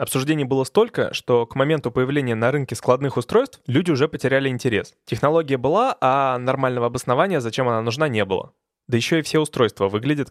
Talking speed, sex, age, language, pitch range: 180 wpm, male, 20-39, Russian, 120-150 Hz